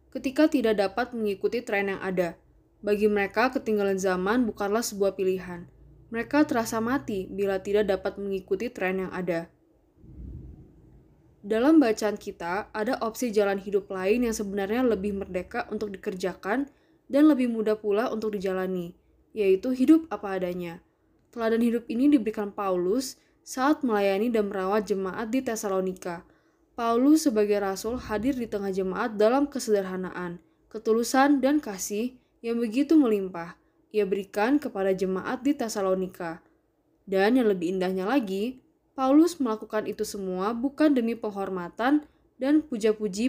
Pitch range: 195-250 Hz